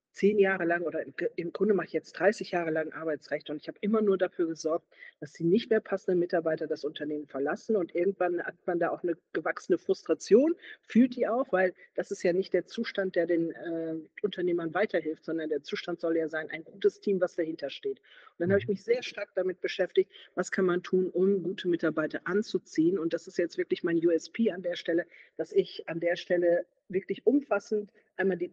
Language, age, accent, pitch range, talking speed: German, 50-69, German, 165-205 Hz, 210 wpm